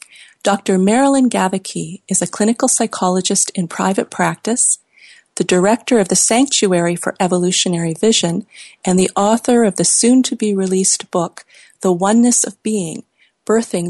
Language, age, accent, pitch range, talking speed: English, 40-59, American, 180-225 Hz, 140 wpm